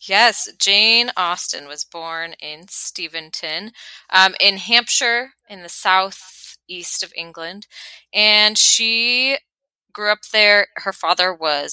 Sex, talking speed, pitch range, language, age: female, 120 wpm, 165-215 Hz, English, 20-39